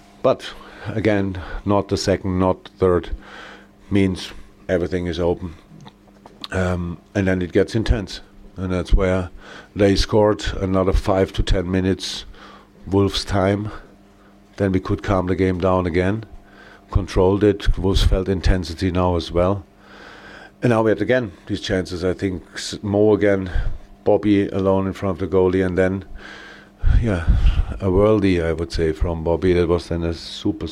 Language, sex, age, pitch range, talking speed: English, male, 50-69, 90-100 Hz, 155 wpm